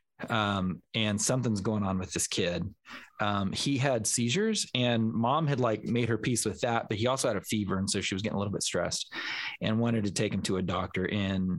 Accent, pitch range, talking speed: American, 95-120 Hz, 235 wpm